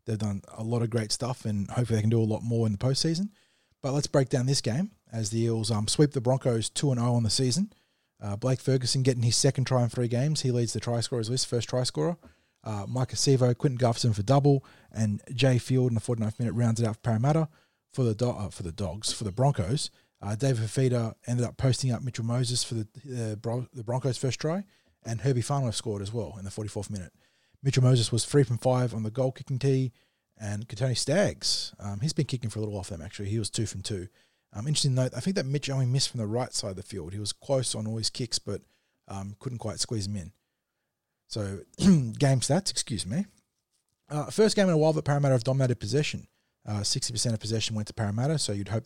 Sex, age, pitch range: male, 20-39, 110-130 Hz